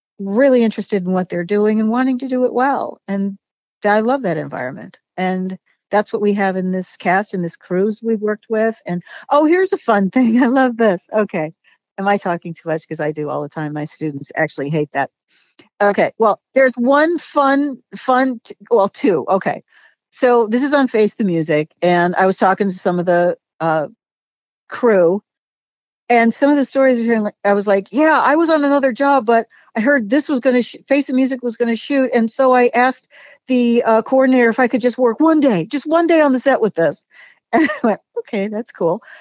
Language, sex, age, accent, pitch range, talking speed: English, female, 50-69, American, 185-250 Hz, 220 wpm